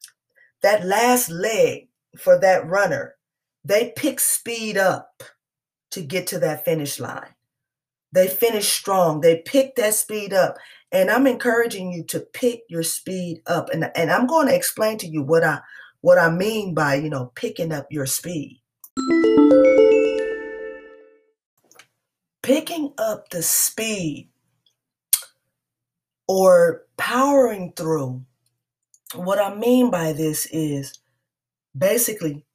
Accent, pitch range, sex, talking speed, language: American, 160-245 Hz, female, 120 wpm, English